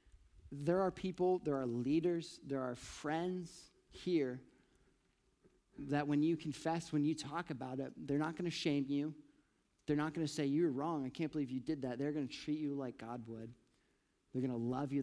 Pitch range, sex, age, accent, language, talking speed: 130-165 Hz, male, 40-59, American, English, 205 wpm